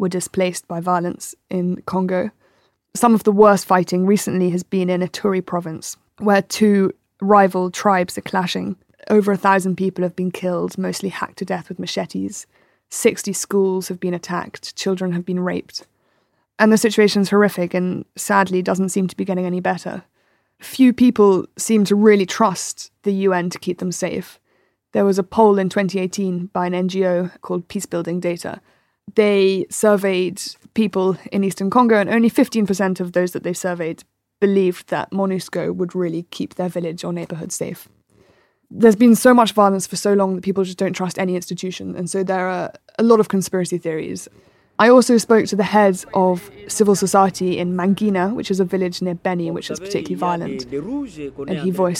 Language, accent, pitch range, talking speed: English, British, 175-200 Hz, 180 wpm